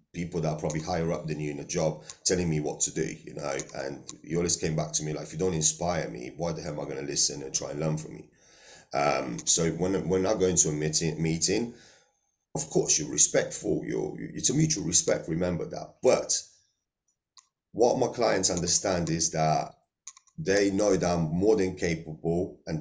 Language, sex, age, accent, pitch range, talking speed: English, male, 30-49, British, 80-95 Hz, 215 wpm